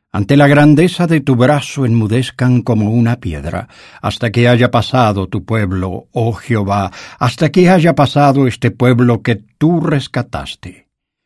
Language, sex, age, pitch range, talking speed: English, male, 60-79, 105-140 Hz, 145 wpm